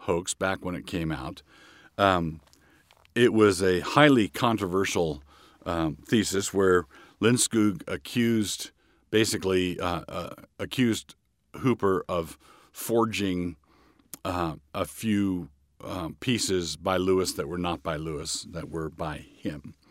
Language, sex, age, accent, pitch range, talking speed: English, male, 50-69, American, 80-100 Hz, 120 wpm